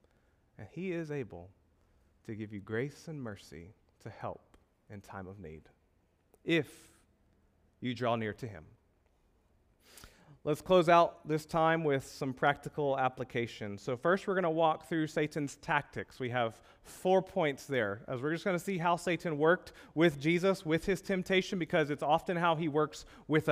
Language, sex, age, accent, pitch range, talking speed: English, male, 30-49, American, 130-190 Hz, 170 wpm